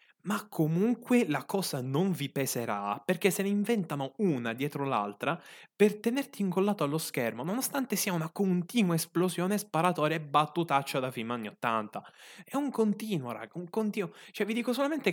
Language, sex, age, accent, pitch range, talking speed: Italian, male, 20-39, native, 125-185 Hz, 165 wpm